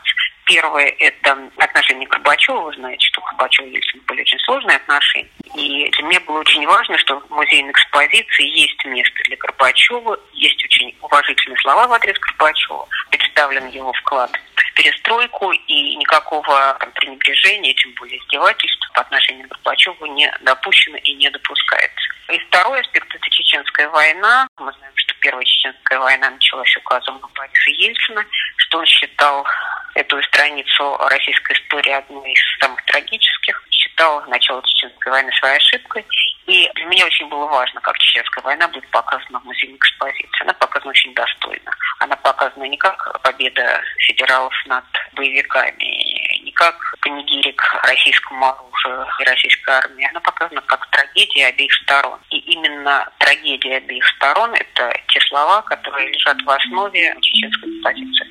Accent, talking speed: American, 150 wpm